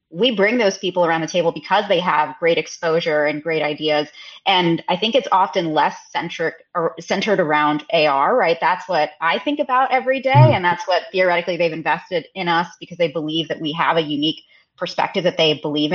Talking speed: 205 wpm